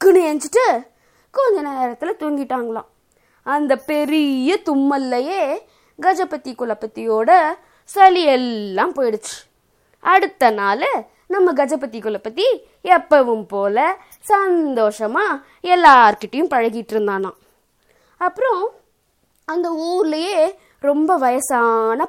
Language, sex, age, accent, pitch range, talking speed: Tamil, female, 20-39, native, 225-360 Hz, 80 wpm